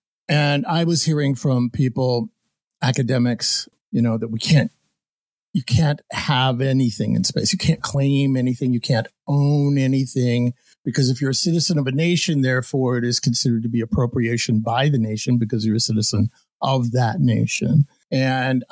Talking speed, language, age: 165 wpm, English, 50-69